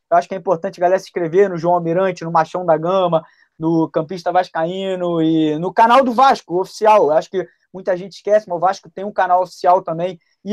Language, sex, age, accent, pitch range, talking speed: Portuguese, male, 20-39, Brazilian, 160-185 Hz, 230 wpm